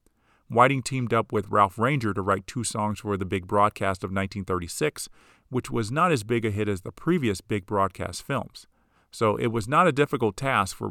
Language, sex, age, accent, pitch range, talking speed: English, male, 40-59, American, 100-120 Hz, 205 wpm